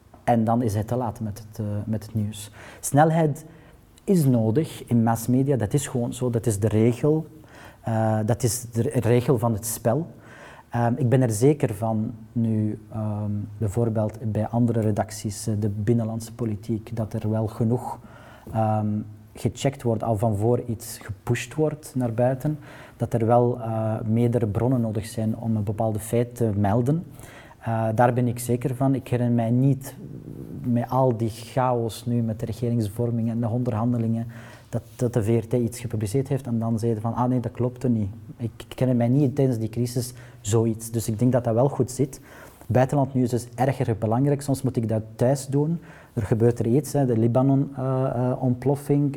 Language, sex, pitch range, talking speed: Dutch, male, 115-125 Hz, 190 wpm